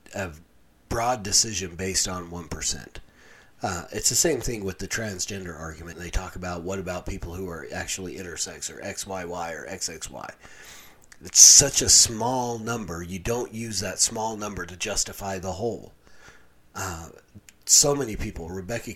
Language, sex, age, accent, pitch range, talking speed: English, male, 40-59, American, 90-115 Hz, 170 wpm